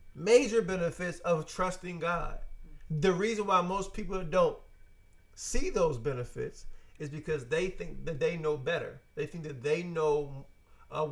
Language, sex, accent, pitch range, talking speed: English, male, American, 150-185 Hz, 150 wpm